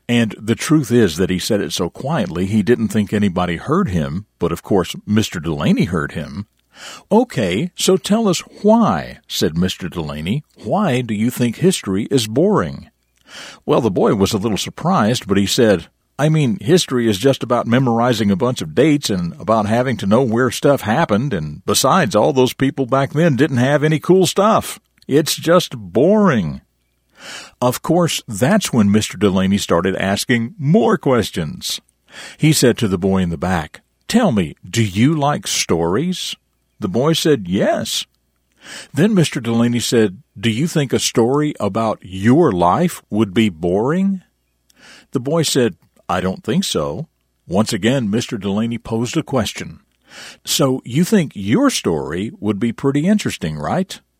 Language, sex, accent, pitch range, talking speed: English, male, American, 100-155 Hz, 165 wpm